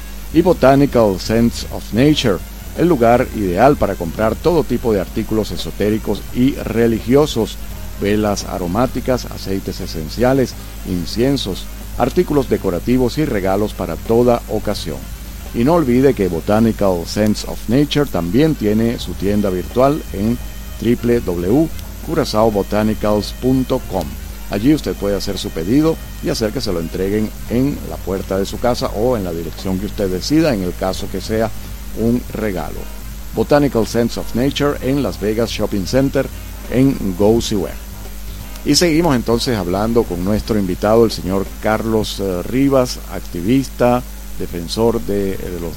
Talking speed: 135 wpm